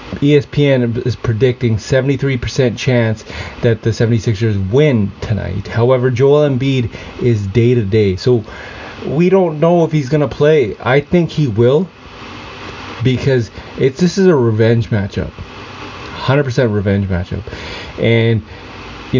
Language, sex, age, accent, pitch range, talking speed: English, male, 30-49, American, 110-140 Hz, 130 wpm